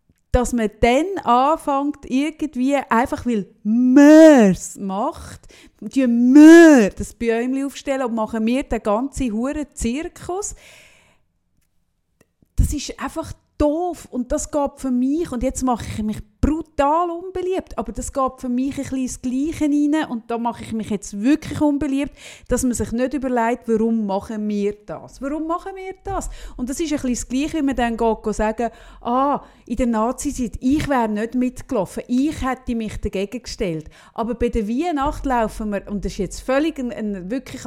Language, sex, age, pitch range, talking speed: German, female, 30-49, 210-275 Hz, 170 wpm